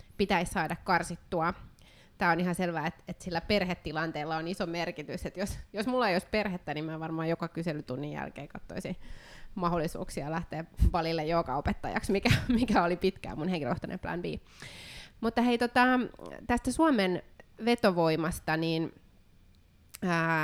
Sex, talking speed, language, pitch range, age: female, 145 wpm, Finnish, 155-185 Hz, 20-39